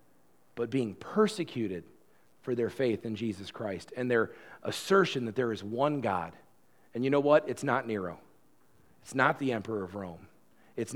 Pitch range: 120-175 Hz